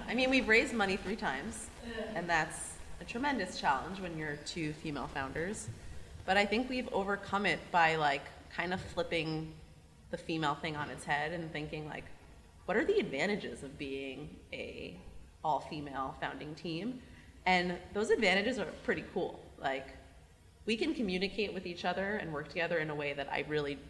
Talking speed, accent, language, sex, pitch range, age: 175 wpm, American, English, female, 150-195 Hz, 30-49